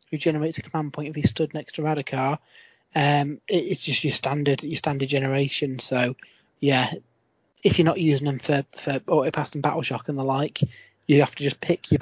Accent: British